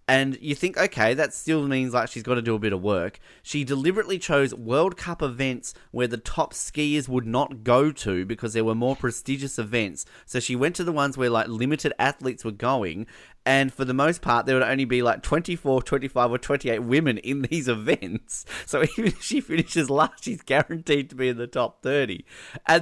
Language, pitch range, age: English, 125-180 Hz, 20-39